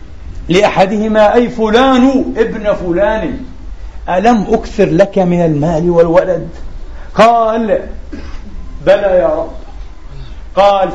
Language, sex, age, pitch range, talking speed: Arabic, male, 50-69, 180-225 Hz, 90 wpm